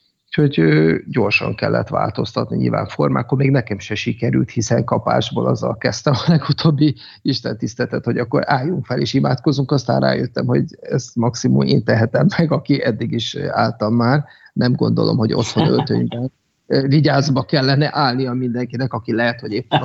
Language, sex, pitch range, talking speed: Hungarian, male, 110-145 Hz, 150 wpm